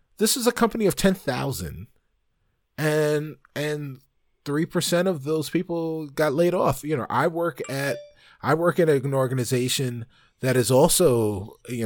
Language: English